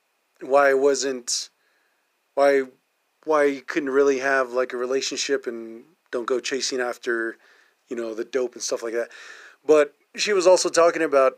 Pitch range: 125-155 Hz